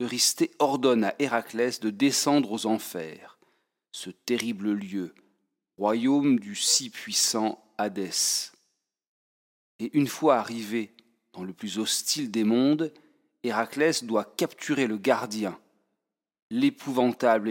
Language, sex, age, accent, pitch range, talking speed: French, male, 40-59, French, 105-135 Hz, 110 wpm